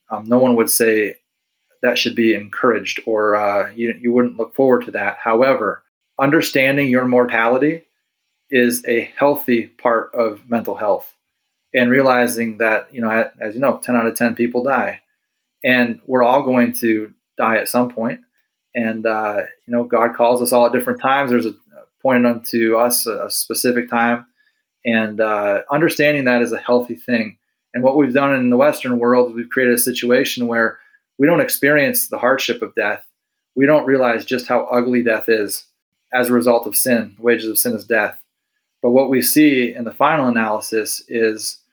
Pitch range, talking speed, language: 115-125 Hz, 180 wpm, English